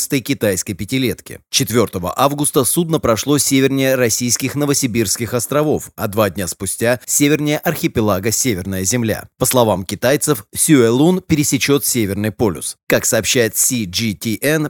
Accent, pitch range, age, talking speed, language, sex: native, 110-145 Hz, 30-49, 115 wpm, Russian, male